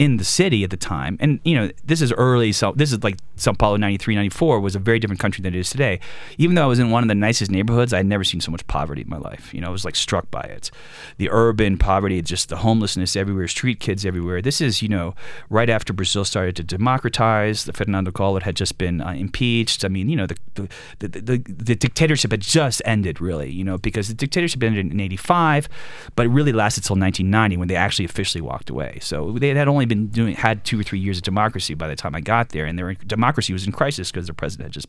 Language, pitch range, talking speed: Spanish, 95-120 Hz, 260 wpm